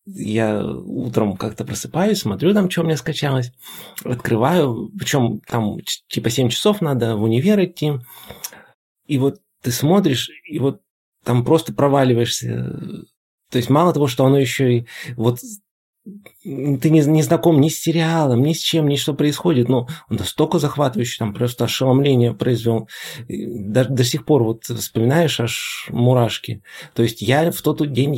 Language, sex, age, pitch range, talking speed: Russian, male, 30-49, 120-150 Hz, 155 wpm